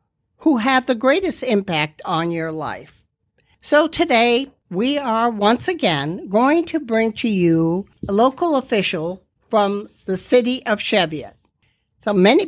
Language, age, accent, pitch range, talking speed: English, 60-79, American, 185-240 Hz, 140 wpm